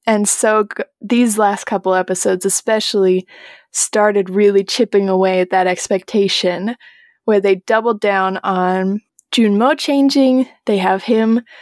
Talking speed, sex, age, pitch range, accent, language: 130 wpm, female, 20-39, 195-245 Hz, American, English